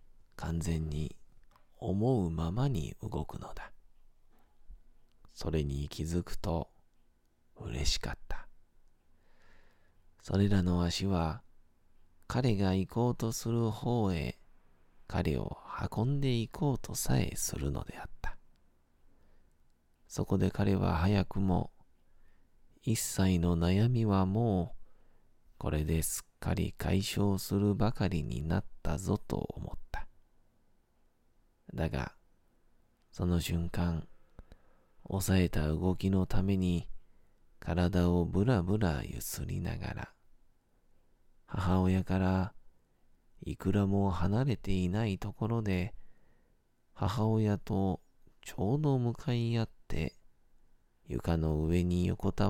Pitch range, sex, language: 80-100 Hz, male, Japanese